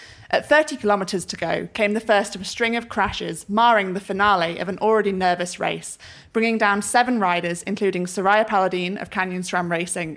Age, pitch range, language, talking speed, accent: 20-39, 180-220 Hz, English, 190 wpm, British